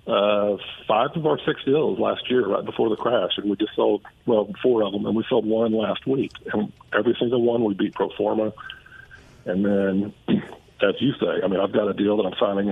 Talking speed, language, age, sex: 225 wpm, English, 50-69, male